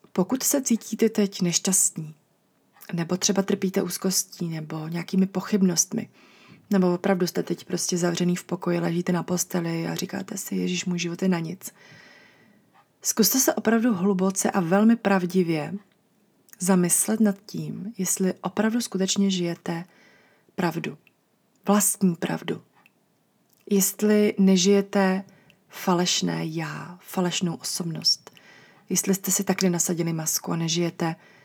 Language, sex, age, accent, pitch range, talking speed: English, female, 30-49, Czech, 175-200 Hz, 120 wpm